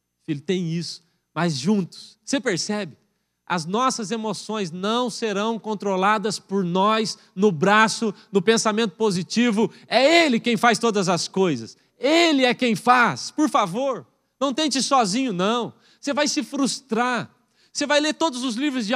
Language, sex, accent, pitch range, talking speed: Portuguese, male, Brazilian, 180-260 Hz, 150 wpm